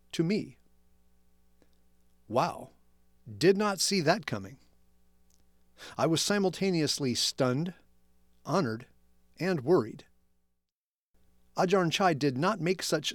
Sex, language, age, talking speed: male, English, 40-59, 95 wpm